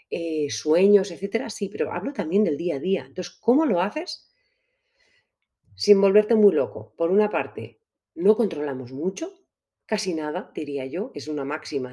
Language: Spanish